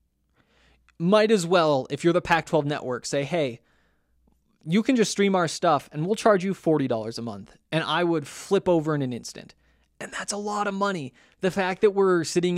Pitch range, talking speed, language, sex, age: 135-180 Hz, 200 wpm, English, male, 20-39